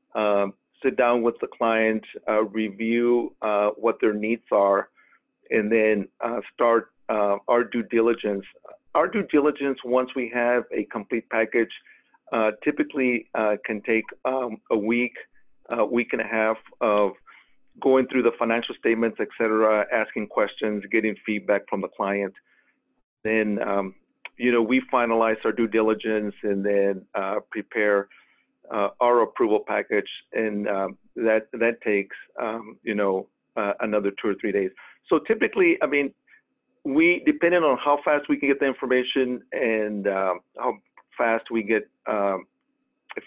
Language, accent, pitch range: English, American, 105-130 Hz